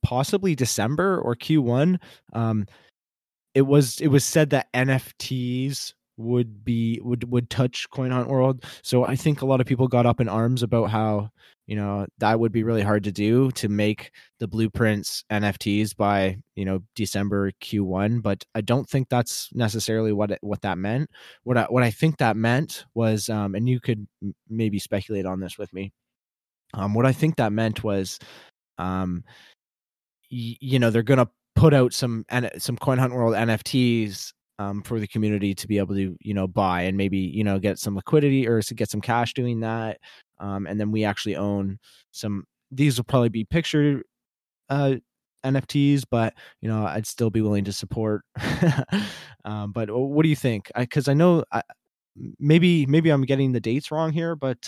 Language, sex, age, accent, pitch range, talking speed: English, male, 20-39, American, 105-130 Hz, 190 wpm